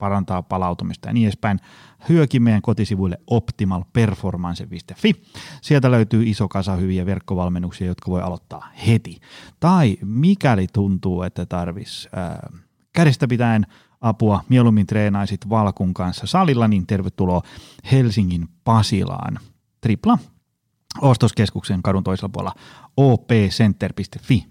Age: 30-49